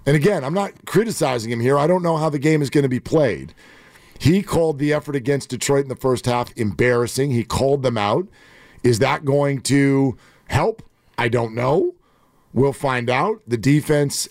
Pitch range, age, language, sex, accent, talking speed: 130-175 Hz, 50-69, English, male, American, 195 wpm